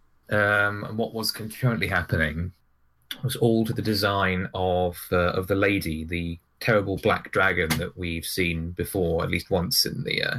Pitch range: 85-110 Hz